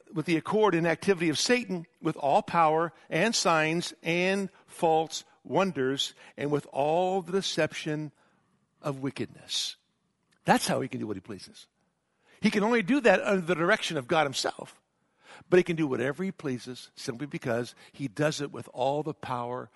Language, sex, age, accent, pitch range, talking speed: English, male, 60-79, American, 155-205 Hz, 175 wpm